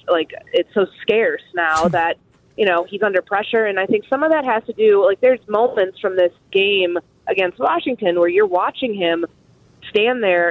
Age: 20-39